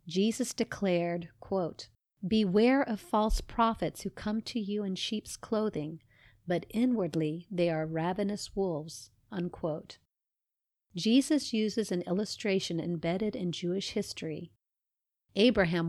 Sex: female